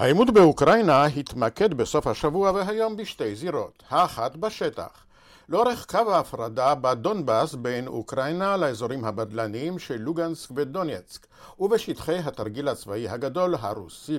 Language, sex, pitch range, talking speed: Hebrew, male, 130-190 Hz, 110 wpm